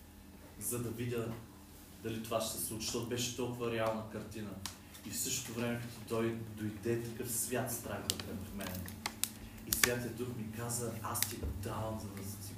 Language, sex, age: Bulgarian, male, 30-49